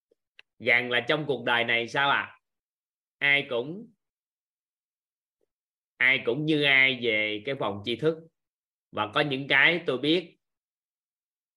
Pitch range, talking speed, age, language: 115-150 Hz, 135 wpm, 20-39, Vietnamese